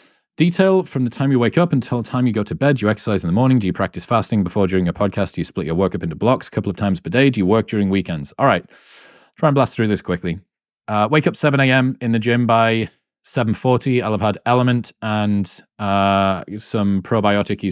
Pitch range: 100-125 Hz